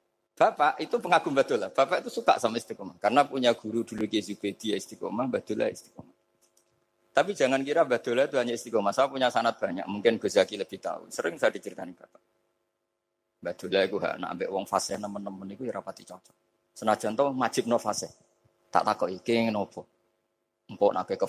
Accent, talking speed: native, 180 wpm